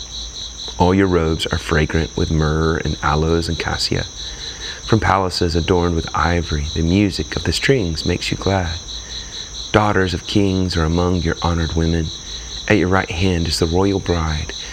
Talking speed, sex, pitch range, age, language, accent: 165 wpm, male, 80-95 Hz, 30-49, English, American